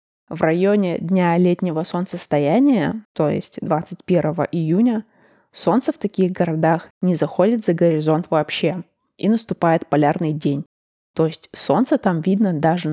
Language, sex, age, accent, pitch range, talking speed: Russian, female, 20-39, native, 165-195 Hz, 130 wpm